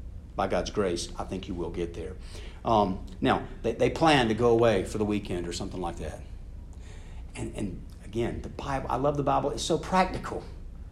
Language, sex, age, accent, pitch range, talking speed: English, male, 50-69, American, 90-145 Hz, 200 wpm